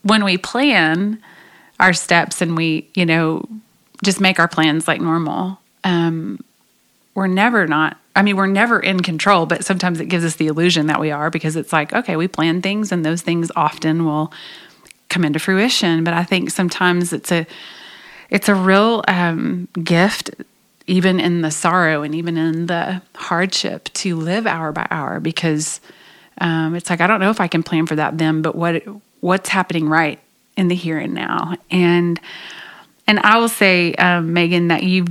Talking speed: 185 wpm